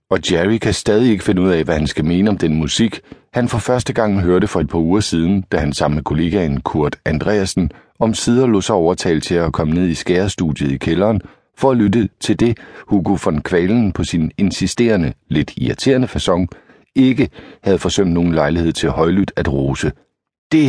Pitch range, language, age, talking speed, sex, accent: 80-115 Hz, Danish, 60-79, 195 wpm, male, native